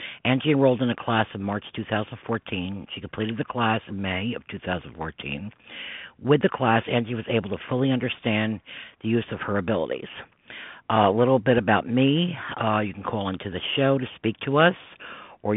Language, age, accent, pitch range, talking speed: English, 50-69, American, 105-125 Hz, 185 wpm